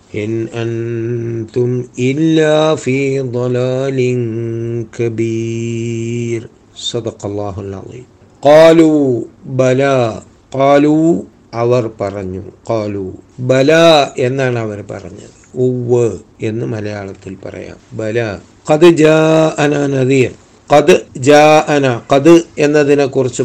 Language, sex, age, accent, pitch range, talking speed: Malayalam, male, 60-79, native, 115-135 Hz, 80 wpm